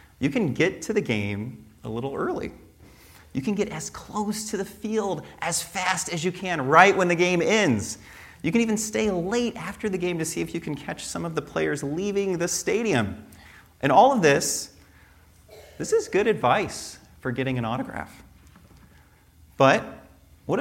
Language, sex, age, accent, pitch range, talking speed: English, male, 30-49, American, 130-200 Hz, 180 wpm